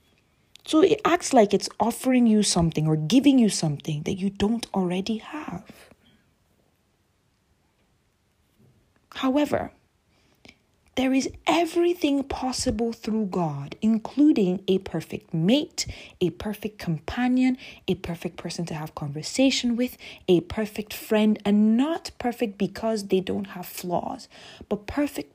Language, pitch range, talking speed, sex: English, 170-245 Hz, 120 wpm, female